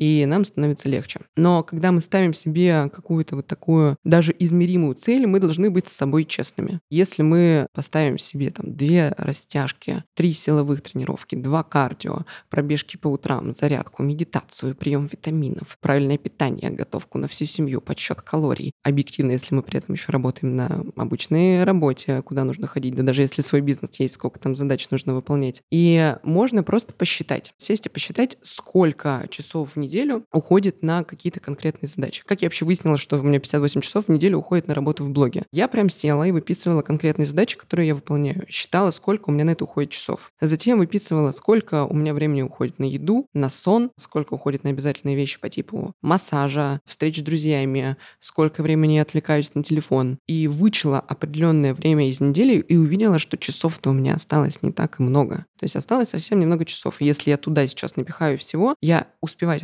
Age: 20-39